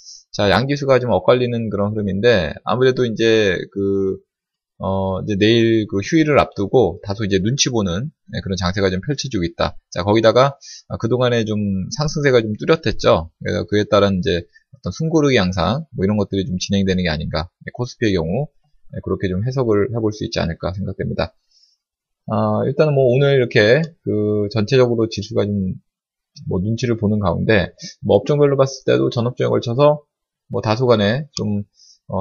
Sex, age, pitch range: male, 20-39, 95-130 Hz